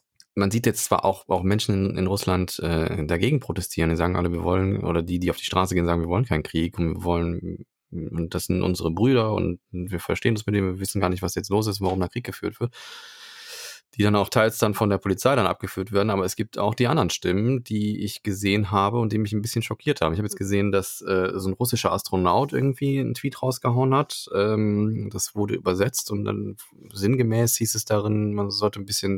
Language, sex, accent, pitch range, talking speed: German, male, German, 95-115 Hz, 235 wpm